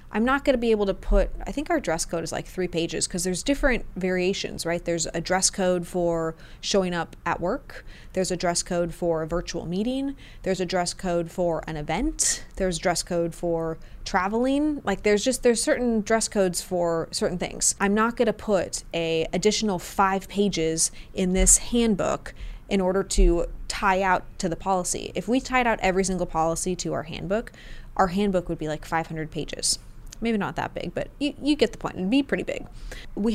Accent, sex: American, female